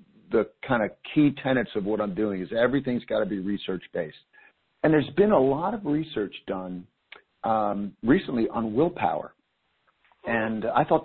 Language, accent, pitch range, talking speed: English, American, 110-135 Hz, 165 wpm